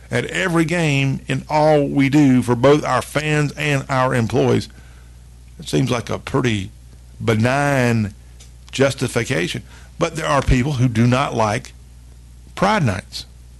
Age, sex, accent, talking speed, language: 50-69, male, American, 135 wpm, English